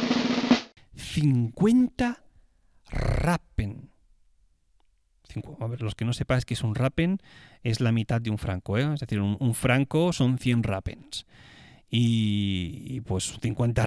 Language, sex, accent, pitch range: Spanish, male, Spanish, 110-140 Hz